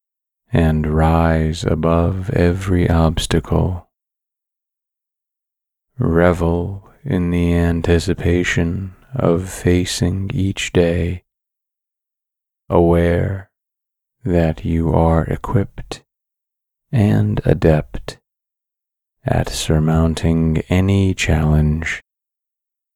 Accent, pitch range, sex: American, 80-95 Hz, male